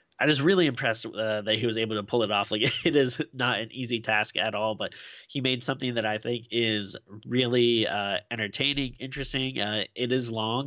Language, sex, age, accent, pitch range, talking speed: English, male, 20-39, American, 105-120 Hz, 215 wpm